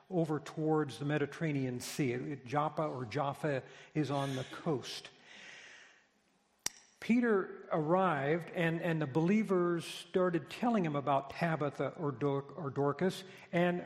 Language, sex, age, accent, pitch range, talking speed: English, male, 60-79, American, 140-175 Hz, 115 wpm